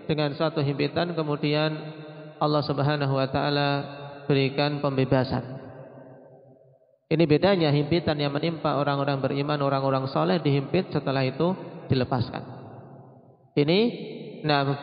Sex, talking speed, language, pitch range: male, 100 wpm, Indonesian, 135-155 Hz